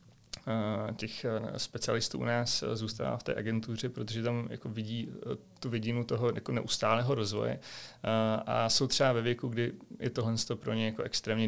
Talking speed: 150 wpm